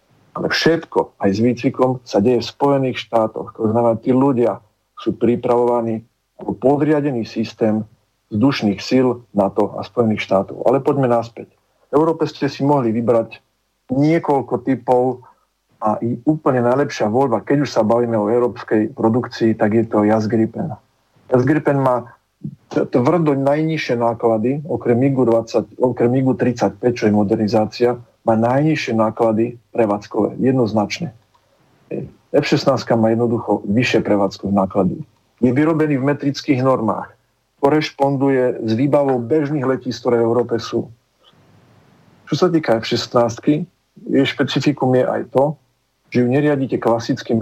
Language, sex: Slovak, male